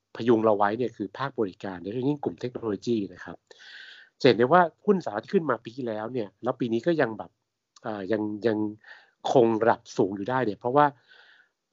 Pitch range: 105-135 Hz